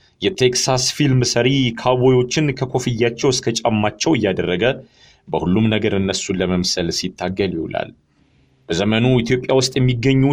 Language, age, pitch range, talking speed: Amharic, 40-59, 110-130 Hz, 105 wpm